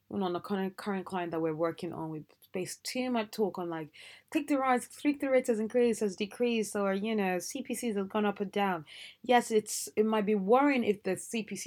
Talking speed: 210 wpm